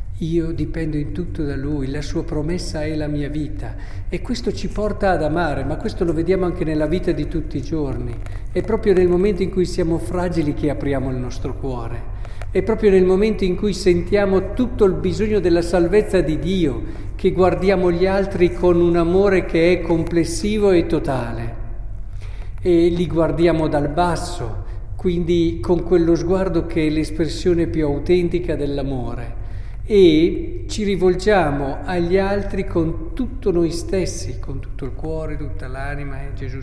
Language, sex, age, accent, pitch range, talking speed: Italian, male, 50-69, native, 120-175 Hz, 165 wpm